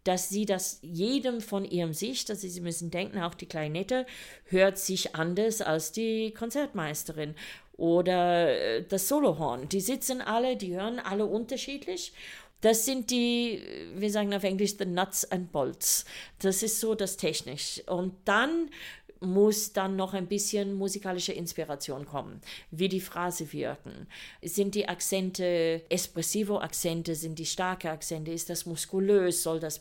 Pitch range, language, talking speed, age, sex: 170-210 Hz, German, 150 wpm, 50-69, female